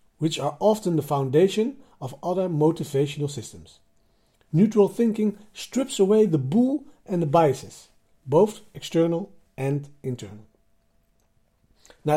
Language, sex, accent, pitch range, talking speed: Dutch, male, Dutch, 140-210 Hz, 115 wpm